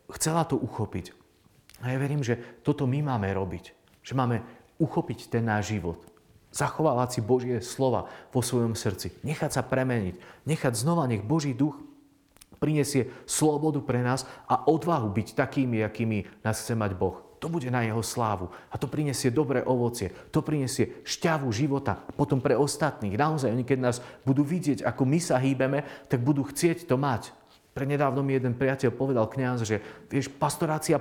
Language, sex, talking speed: Slovak, male, 170 wpm